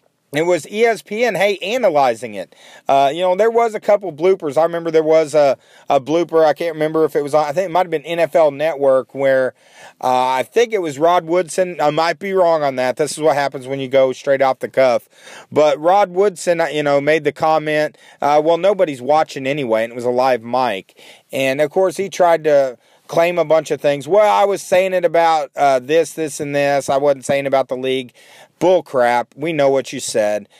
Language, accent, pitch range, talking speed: English, American, 140-185 Hz, 225 wpm